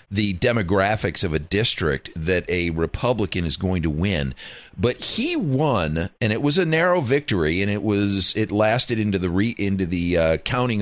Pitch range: 90-120 Hz